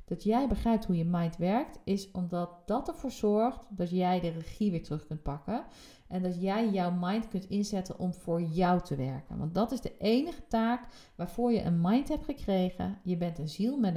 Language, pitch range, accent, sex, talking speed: Dutch, 175-225 Hz, Dutch, female, 210 wpm